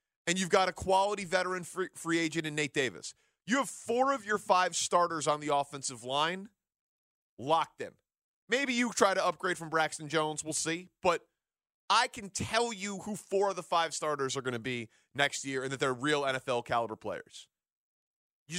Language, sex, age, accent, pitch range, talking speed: English, male, 30-49, American, 140-175 Hz, 190 wpm